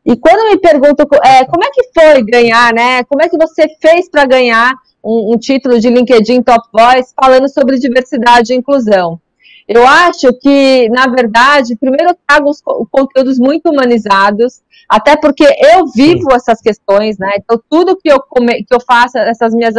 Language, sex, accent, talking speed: Portuguese, female, Brazilian, 180 wpm